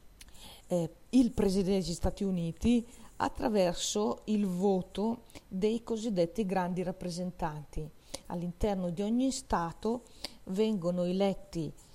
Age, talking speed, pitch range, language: 40-59, 95 wpm, 175-225 Hz, Italian